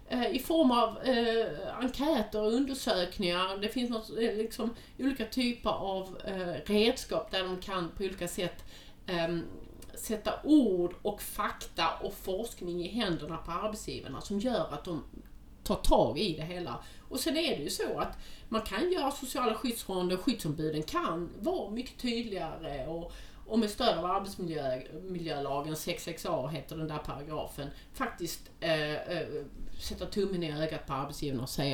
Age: 30-49